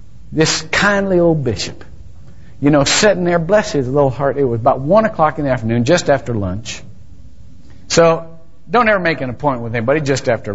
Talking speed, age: 190 wpm, 50-69